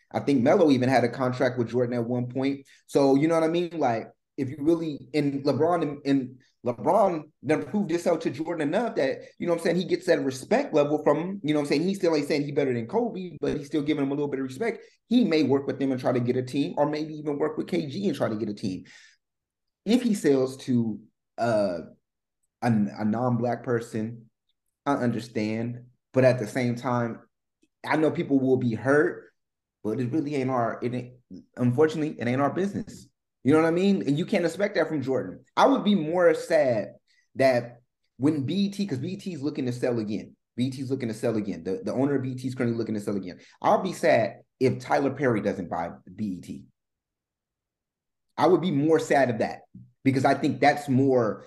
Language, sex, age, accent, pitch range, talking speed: English, male, 30-49, American, 120-155 Hz, 220 wpm